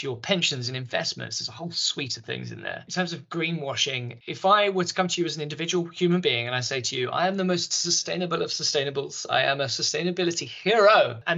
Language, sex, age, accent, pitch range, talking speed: English, male, 20-39, British, 125-160 Hz, 245 wpm